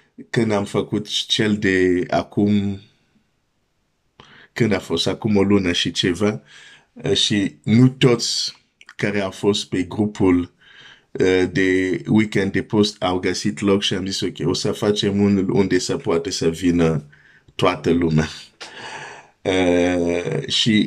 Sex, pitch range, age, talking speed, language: male, 90-110 Hz, 50-69, 135 wpm, Romanian